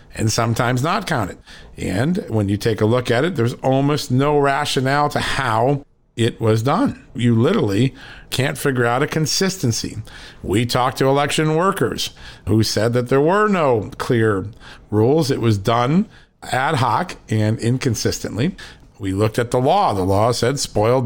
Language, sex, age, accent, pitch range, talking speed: English, male, 50-69, American, 115-145 Hz, 160 wpm